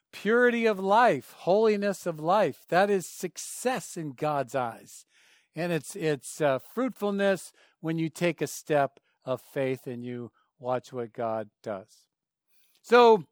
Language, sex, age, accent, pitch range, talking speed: English, male, 50-69, American, 150-195 Hz, 140 wpm